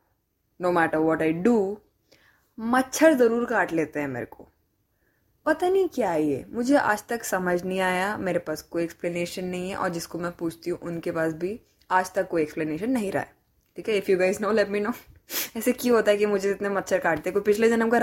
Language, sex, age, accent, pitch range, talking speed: English, female, 20-39, Indian, 170-275 Hz, 220 wpm